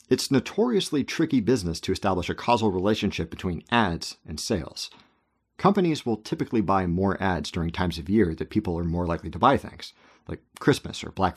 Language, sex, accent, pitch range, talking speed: English, male, American, 90-120 Hz, 185 wpm